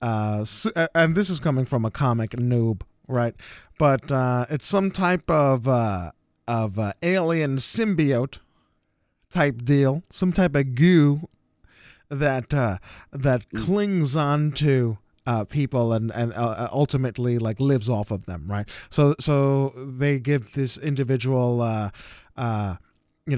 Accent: American